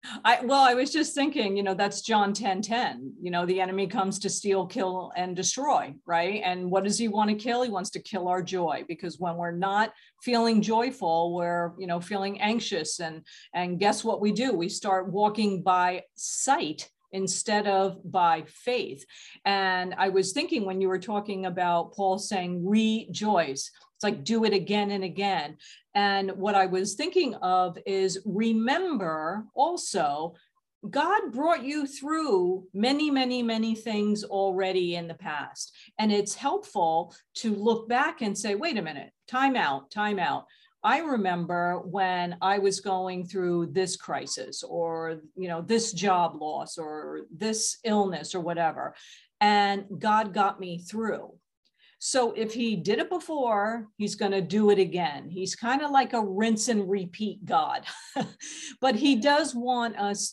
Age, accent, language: 50-69, American, English